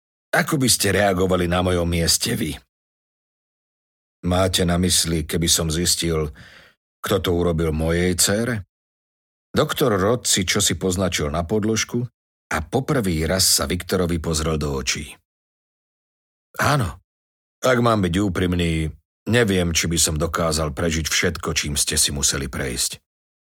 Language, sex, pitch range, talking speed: Slovak, male, 75-95 Hz, 130 wpm